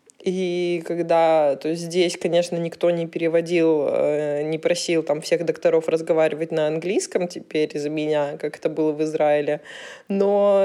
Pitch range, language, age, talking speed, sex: 165-200 Hz, Russian, 20-39, 140 wpm, female